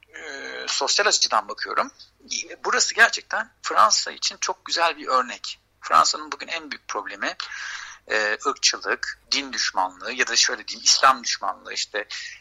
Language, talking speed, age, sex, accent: Turkish, 125 wpm, 60-79, male, native